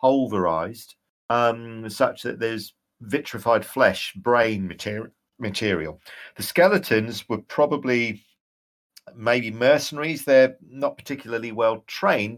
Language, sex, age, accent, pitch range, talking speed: English, male, 50-69, British, 105-135 Hz, 90 wpm